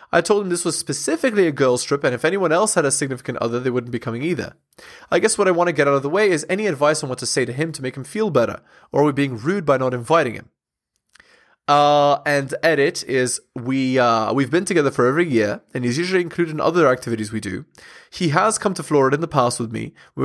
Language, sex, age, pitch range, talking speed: English, male, 20-39, 125-170 Hz, 260 wpm